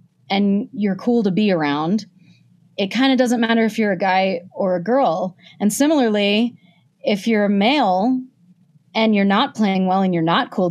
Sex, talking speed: female, 185 wpm